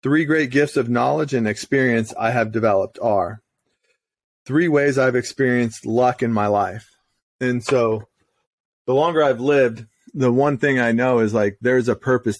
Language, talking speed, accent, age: English, 170 wpm, American, 30-49